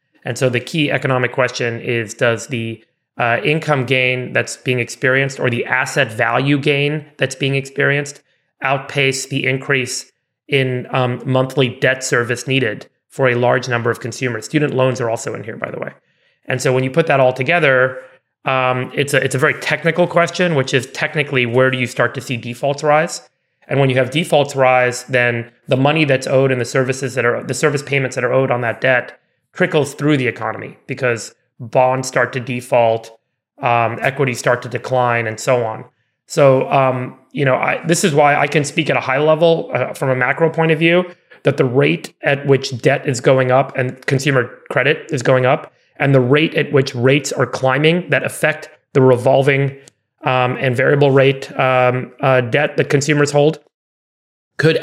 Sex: male